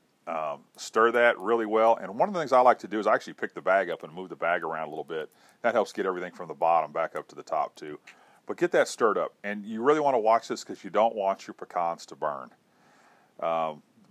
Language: English